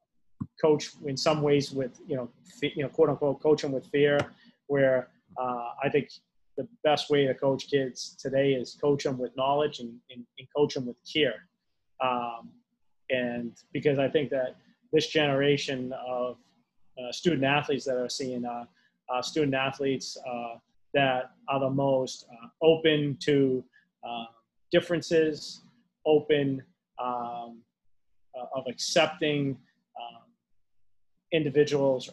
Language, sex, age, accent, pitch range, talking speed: English, male, 30-49, American, 125-145 Hz, 135 wpm